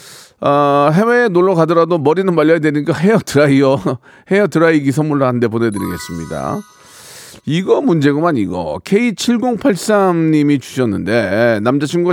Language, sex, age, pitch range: Korean, male, 40-59, 125-195 Hz